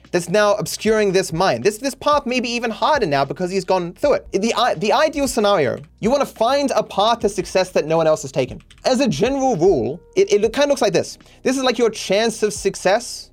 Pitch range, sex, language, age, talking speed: 165-240 Hz, male, English, 30-49, 245 wpm